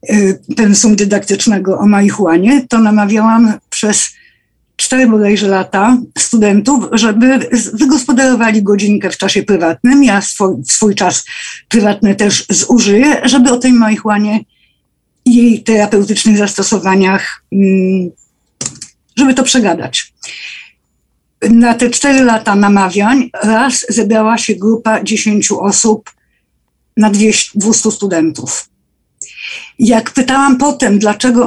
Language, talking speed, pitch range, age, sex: Polish, 105 wpm, 205-240 Hz, 50-69, female